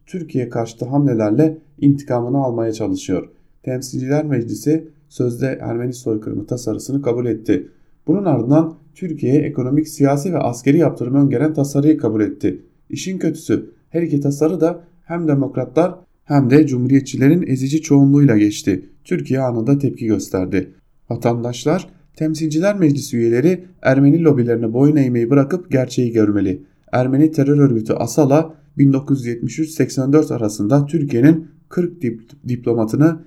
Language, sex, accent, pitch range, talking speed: German, male, Turkish, 120-155 Hz, 115 wpm